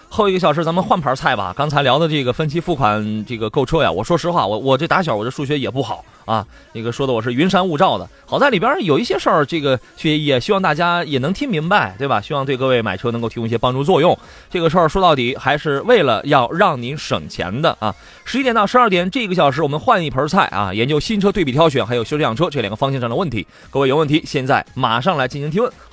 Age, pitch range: 20-39, 125-180 Hz